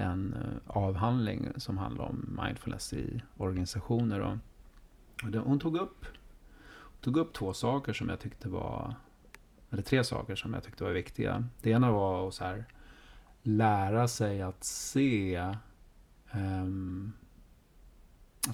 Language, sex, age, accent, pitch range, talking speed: Swedish, male, 30-49, native, 95-120 Hz, 125 wpm